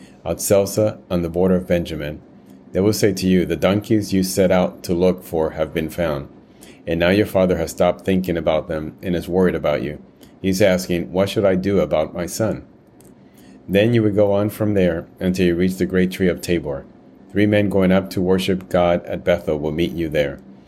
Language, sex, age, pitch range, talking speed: English, male, 30-49, 85-95 Hz, 210 wpm